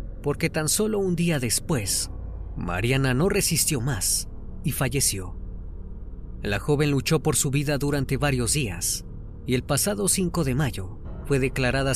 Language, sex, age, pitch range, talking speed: Spanish, female, 30-49, 105-150 Hz, 145 wpm